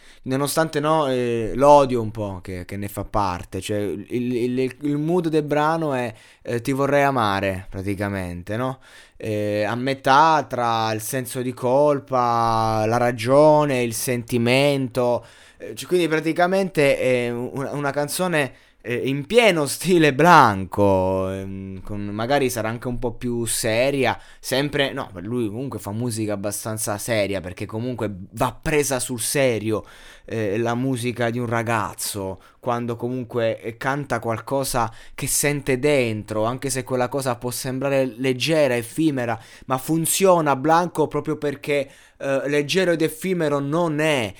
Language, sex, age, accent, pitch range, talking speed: Italian, male, 20-39, native, 110-145 Hz, 130 wpm